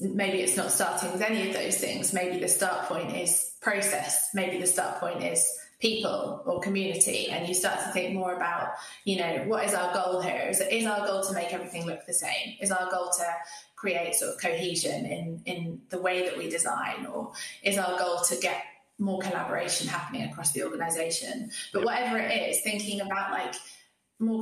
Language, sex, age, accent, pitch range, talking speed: English, female, 20-39, British, 175-200 Hz, 205 wpm